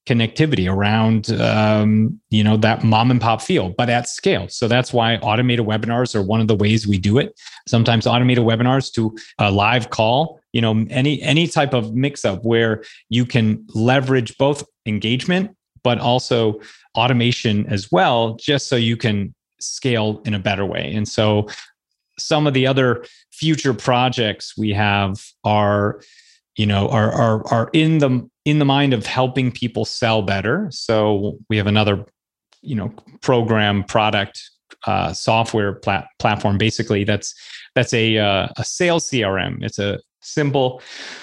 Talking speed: 160 wpm